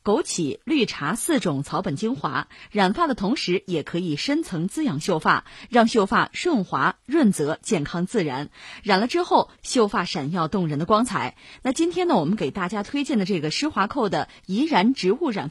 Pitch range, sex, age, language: 175-270 Hz, female, 20-39, Chinese